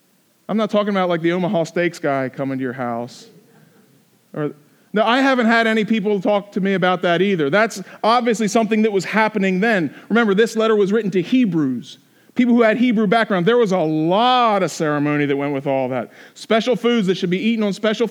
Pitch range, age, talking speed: 185-225 Hz, 40-59, 210 wpm